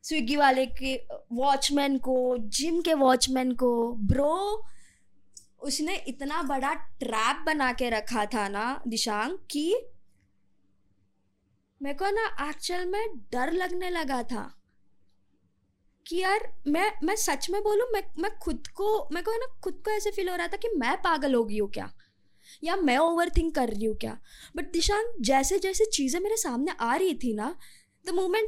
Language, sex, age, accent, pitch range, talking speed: Hindi, female, 20-39, native, 255-380 Hz, 160 wpm